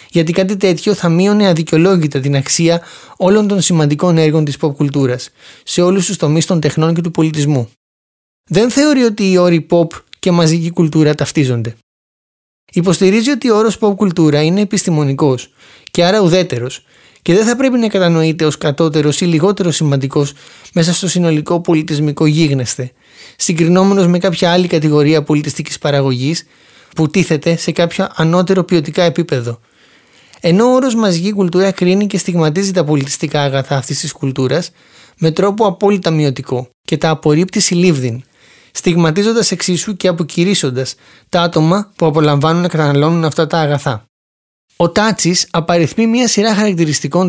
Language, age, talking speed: Greek, 20-39, 145 wpm